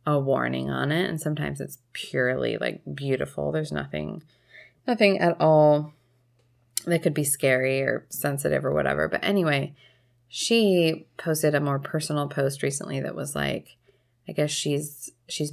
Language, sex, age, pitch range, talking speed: English, female, 20-39, 130-170 Hz, 150 wpm